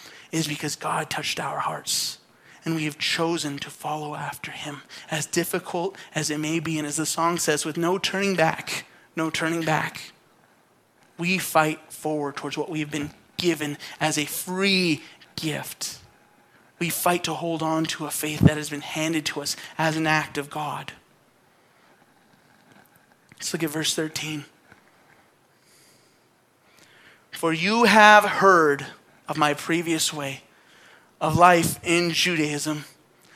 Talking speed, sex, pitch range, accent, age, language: 145 wpm, male, 155-215 Hz, American, 30-49, English